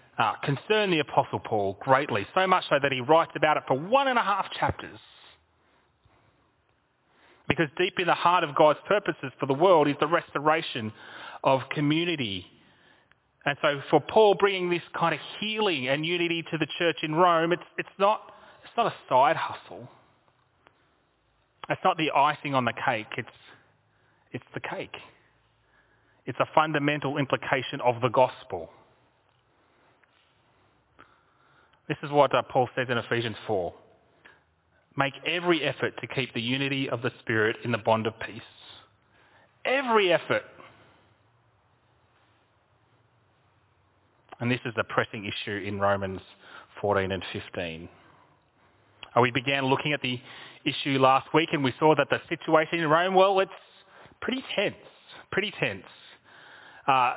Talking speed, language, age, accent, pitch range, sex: 145 wpm, English, 30-49, Australian, 120-170 Hz, male